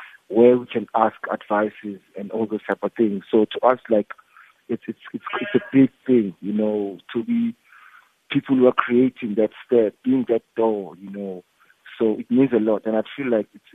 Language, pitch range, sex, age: English, 105-125 Hz, male, 50-69